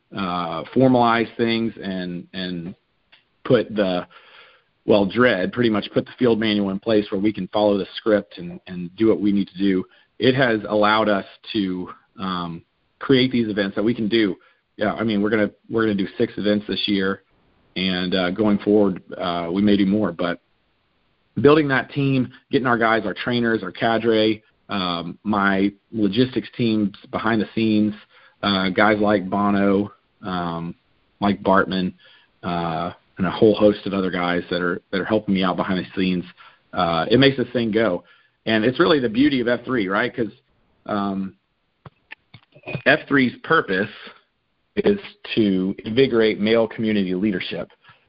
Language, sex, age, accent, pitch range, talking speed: English, male, 40-59, American, 95-115 Hz, 165 wpm